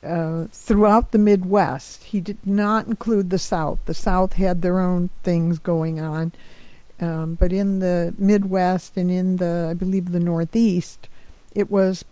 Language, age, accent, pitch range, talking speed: English, 50-69, American, 165-195 Hz, 160 wpm